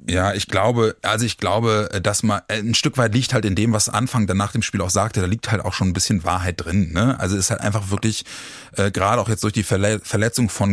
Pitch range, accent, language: 100-125 Hz, German, German